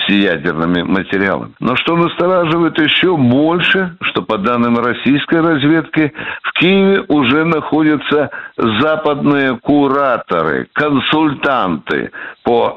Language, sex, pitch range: Russian, male, 110-165 Hz